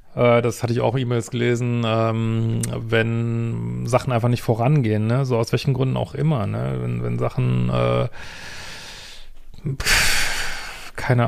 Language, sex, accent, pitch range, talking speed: German, male, German, 110-130 Hz, 130 wpm